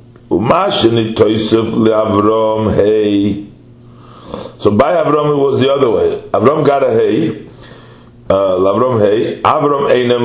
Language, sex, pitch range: English, male, 115-130 Hz